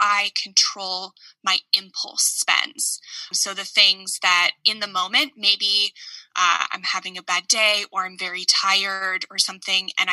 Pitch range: 185-230 Hz